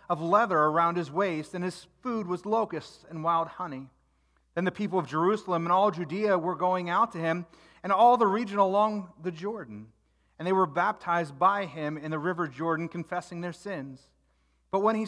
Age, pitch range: 30-49, 145-195 Hz